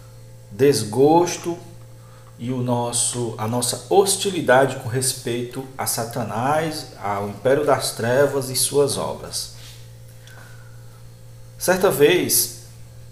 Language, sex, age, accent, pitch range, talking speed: Portuguese, male, 50-69, Brazilian, 115-130 Hz, 80 wpm